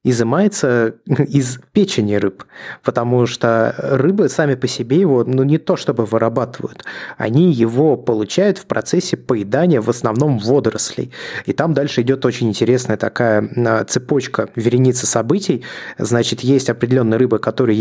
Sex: male